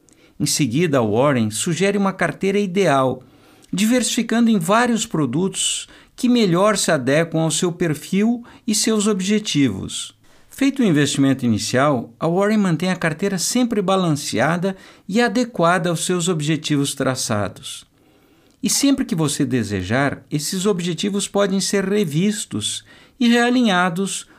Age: 60-79